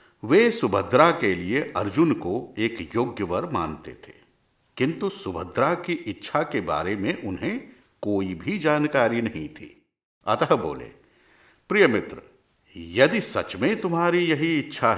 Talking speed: 130 wpm